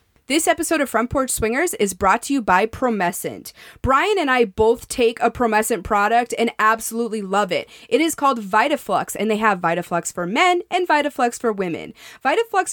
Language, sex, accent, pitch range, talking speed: English, female, American, 205-275 Hz, 185 wpm